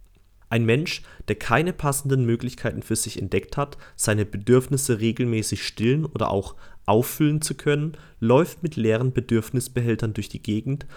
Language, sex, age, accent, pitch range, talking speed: German, male, 30-49, German, 105-135 Hz, 140 wpm